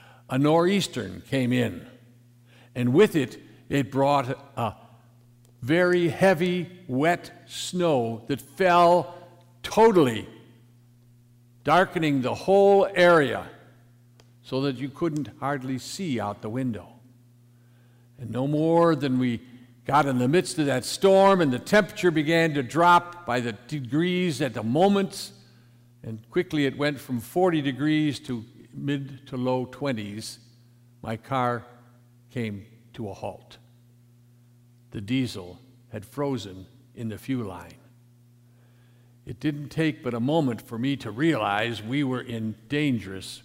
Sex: male